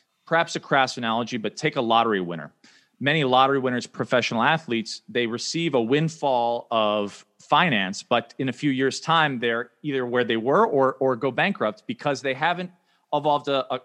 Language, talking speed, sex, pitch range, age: English, 180 wpm, male, 120-150 Hz, 40-59